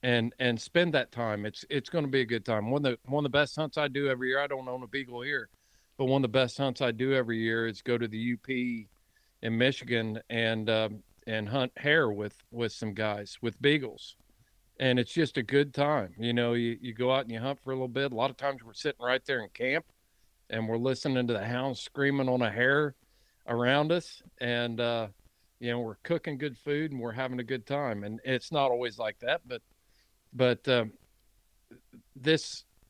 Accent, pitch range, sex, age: American, 115-135 Hz, male, 50-69